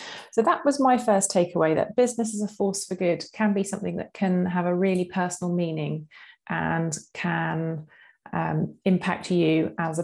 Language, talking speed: English, 180 wpm